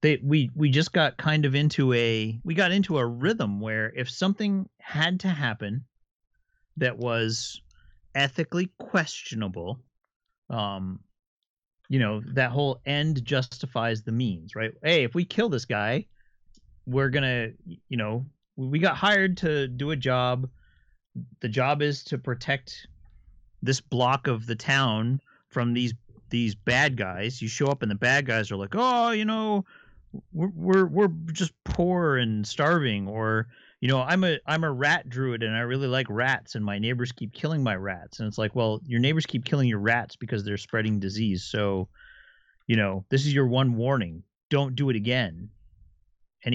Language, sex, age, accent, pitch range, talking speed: English, male, 30-49, American, 110-155 Hz, 170 wpm